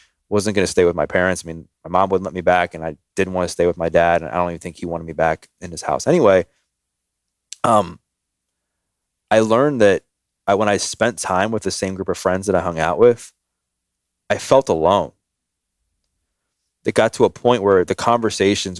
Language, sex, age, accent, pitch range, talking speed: English, male, 20-39, American, 85-95 Hz, 215 wpm